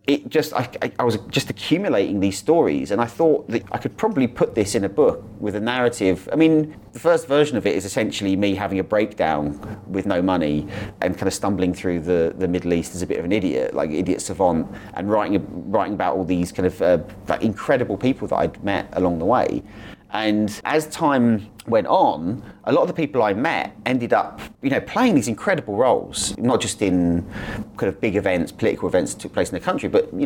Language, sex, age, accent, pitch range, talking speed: English, male, 30-49, British, 95-110 Hz, 225 wpm